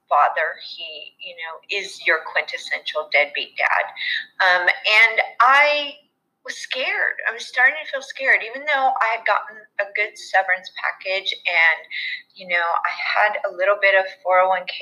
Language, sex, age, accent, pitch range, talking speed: English, female, 30-49, American, 190-285 Hz, 160 wpm